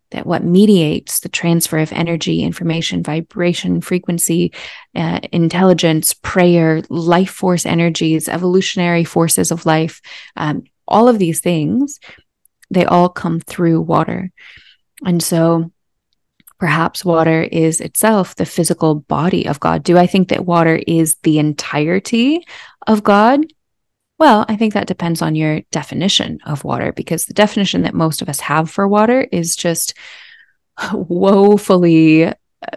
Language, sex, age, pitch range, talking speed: English, female, 20-39, 160-190 Hz, 135 wpm